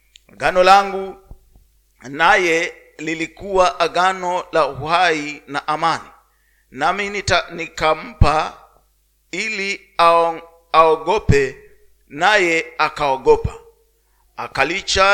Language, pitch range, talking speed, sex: Swahili, 160-195 Hz, 65 wpm, male